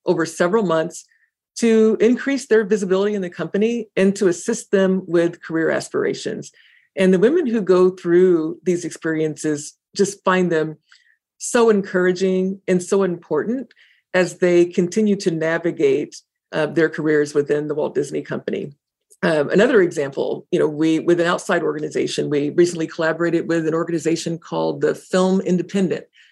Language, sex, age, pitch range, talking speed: English, female, 50-69, 160-200 Hz, 150 wpm